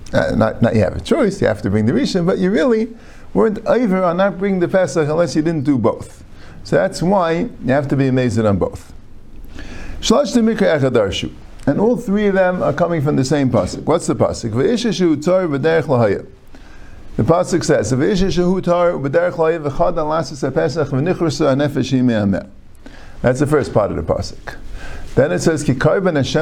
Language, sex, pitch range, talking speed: English, male, 115-175 Hz, 145 wpm